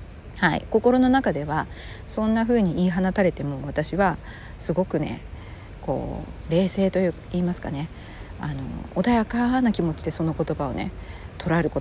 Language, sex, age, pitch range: Japanese, female, 40-59, 155-245 Hz